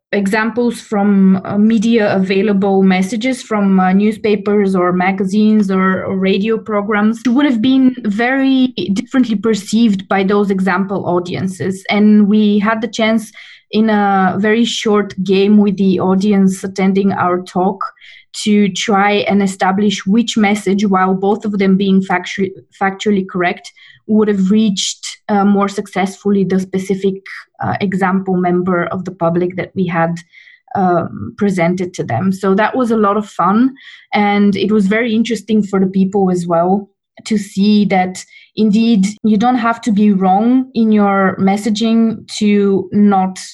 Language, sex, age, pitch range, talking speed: English, female, 20-39, 190-215 Hz, 150 wpm